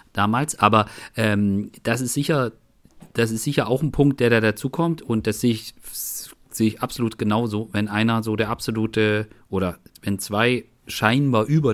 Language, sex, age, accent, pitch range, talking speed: German, male, 40-59, German, 105-130 Hz, 170 wpm